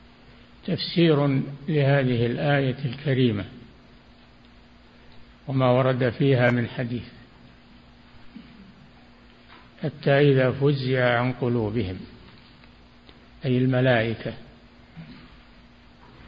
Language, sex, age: Arabic, male, 60-79